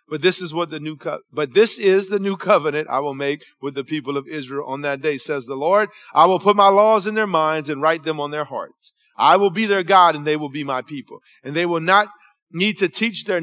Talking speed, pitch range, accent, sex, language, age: 270 wpm, 135-175 Hz, American, male, English, 30-49